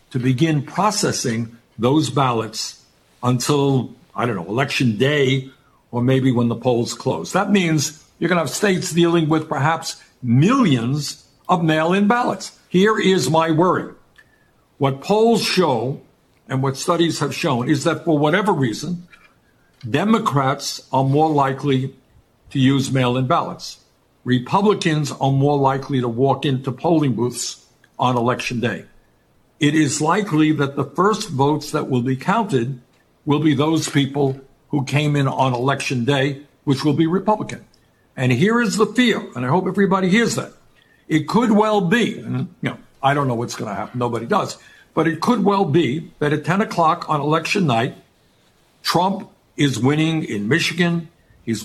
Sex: male